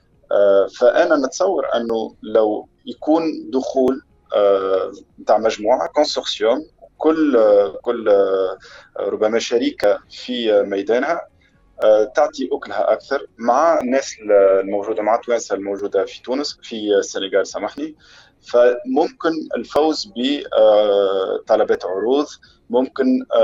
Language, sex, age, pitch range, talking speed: French, male, 30-49, 115-155 Hz, 95 wpm